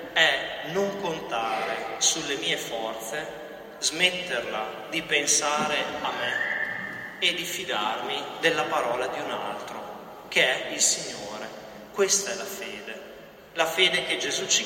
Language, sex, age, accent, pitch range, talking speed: Italian, male, 30-49, native, 135-190 Hz, 130 wpm